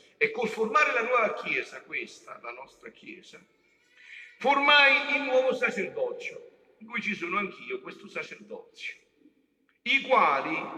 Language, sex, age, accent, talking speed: Italian, male, 50-69, native, 130 wpm